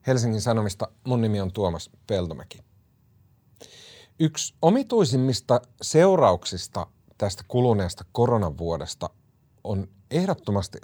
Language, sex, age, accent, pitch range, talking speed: Finnish, male, 30-49, native, 95-125 Hz, 85 wpm